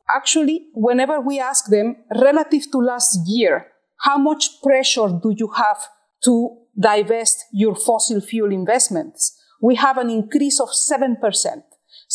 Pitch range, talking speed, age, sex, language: 215-290 Hz, 135 wpm, 40-59, female, English